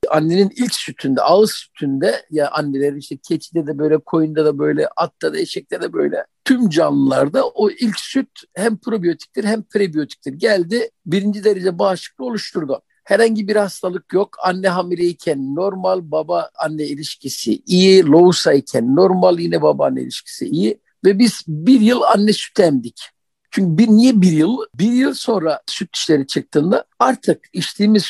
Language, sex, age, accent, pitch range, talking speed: Turkish, male, 50-69, native, 165-230 Hz, 155 wpm